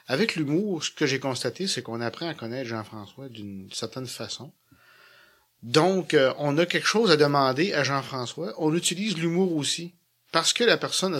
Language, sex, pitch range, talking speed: French, male, 120-165 Hz, 175 wpm